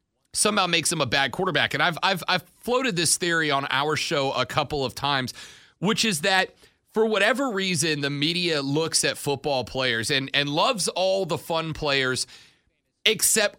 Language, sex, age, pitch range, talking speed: English, male, 30-49, 140-185 Hz, 175 wpm